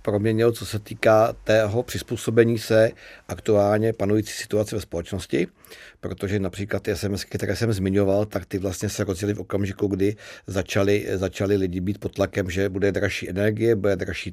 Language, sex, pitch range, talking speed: Czech, male, 100-110 Hz, 160 wpm